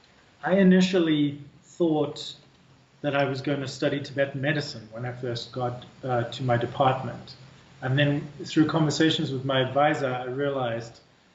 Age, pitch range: 30-49, 130-150 Hz